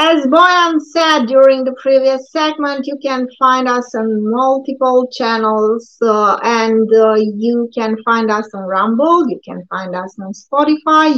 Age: 30-49